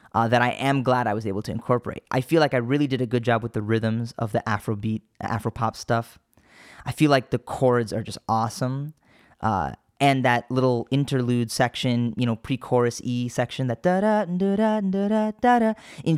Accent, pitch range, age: American, 115-140 Hz, 10-29